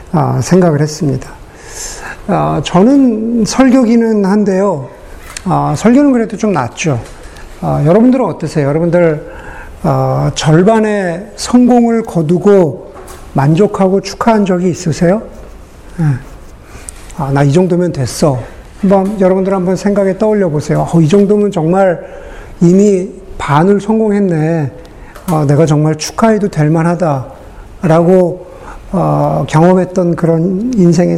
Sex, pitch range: male, 150-205 Hz